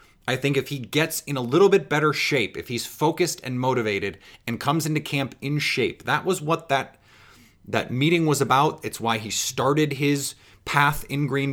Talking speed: 200 wpm